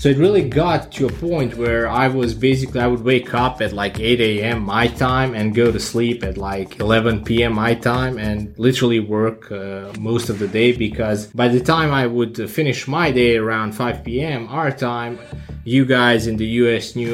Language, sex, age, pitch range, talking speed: English, male, 20-39, 115-135 Hz, 205 wpm